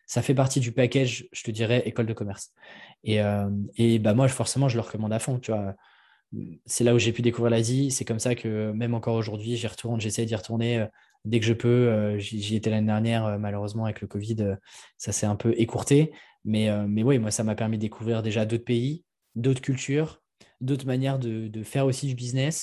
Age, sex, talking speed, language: 20-39, male, 220 wpm, French